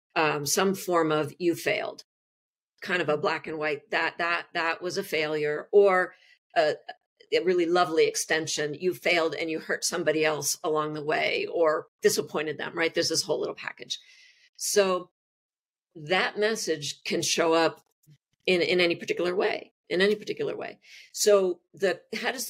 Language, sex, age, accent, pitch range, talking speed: English, female, 50-69, American, 160-225 Hz, 165 wpm